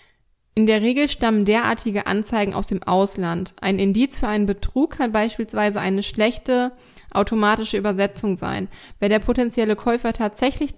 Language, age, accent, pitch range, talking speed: German, 20-39, German, 200-230 Hz, 145 wpm